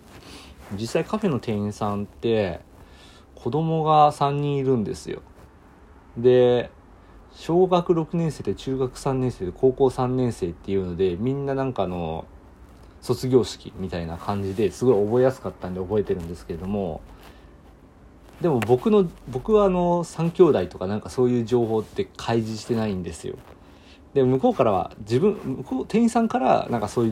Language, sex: Japanese, male